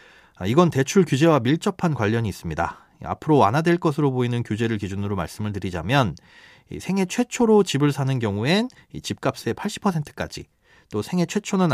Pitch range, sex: 110-165 Hz, male